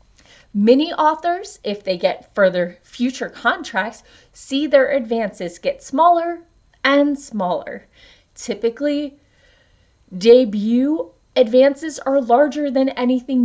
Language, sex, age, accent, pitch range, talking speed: English, female, 30-49, American, 190-260 Hz, 100 wpm